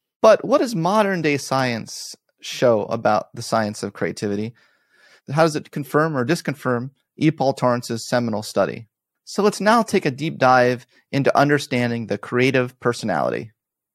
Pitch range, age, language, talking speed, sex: 115-150 Hz, 30-49, English, 145 wpm, male